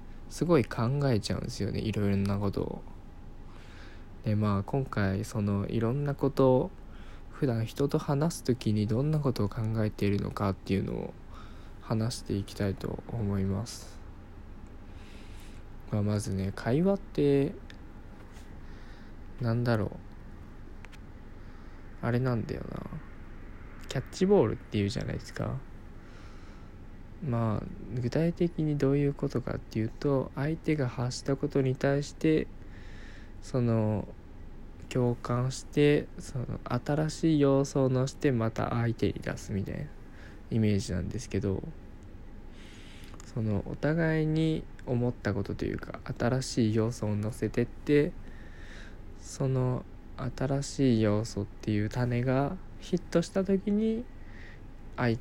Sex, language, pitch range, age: male, Japanese, 100-130 Hz, 20-39